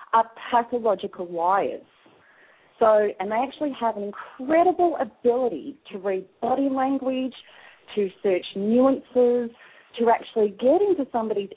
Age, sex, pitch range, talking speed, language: 40-59, female, 210-265 Hz, 120 wpm, English